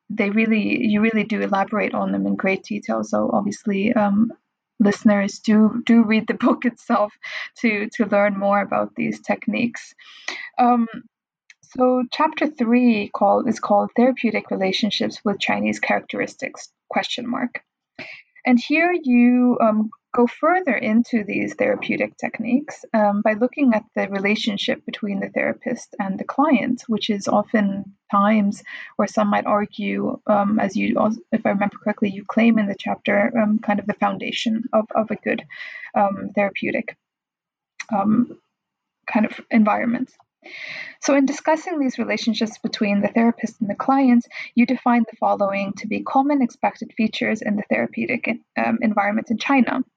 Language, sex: English, female